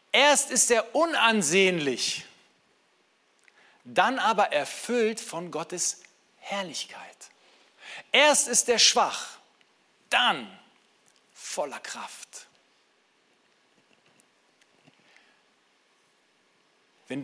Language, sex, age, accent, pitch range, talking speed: German, male, 50-69, German, 175-245 Hz, 65 wpm